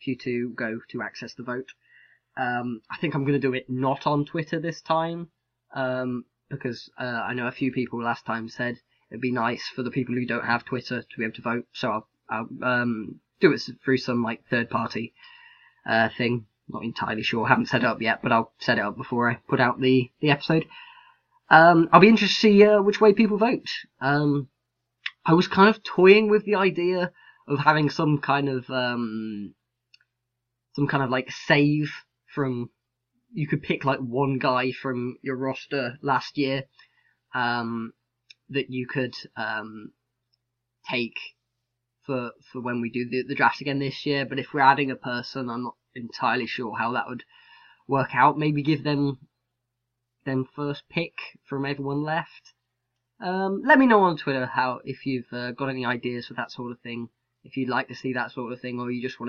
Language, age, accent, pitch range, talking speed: English, 10-29, British, 120-145 Hz, 195 wpm